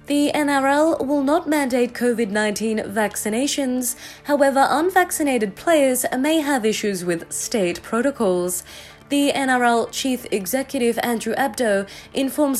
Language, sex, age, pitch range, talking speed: English, female, 20-39, 195-275 Hz, 110 wpm